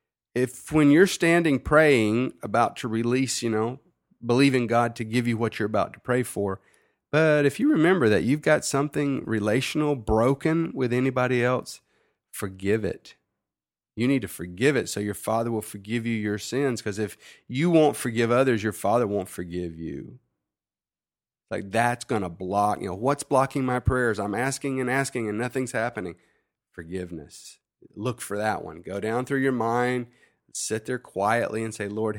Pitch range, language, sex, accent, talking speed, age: 100-125 Hz, English, male, American, 175 wpm, 40-59